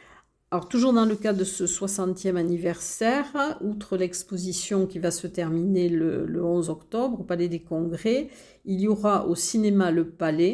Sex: female